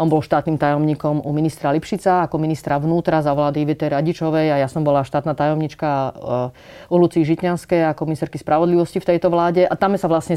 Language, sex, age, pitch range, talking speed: Slovak, female, 30-49, 145-170 Hz, 195 wpm